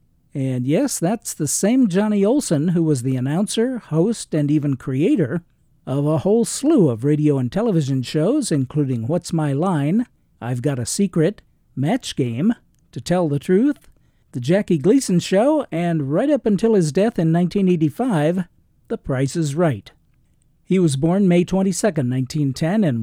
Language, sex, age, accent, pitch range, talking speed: English, male, 50-69, American, 145-185 Hz, 155 wpm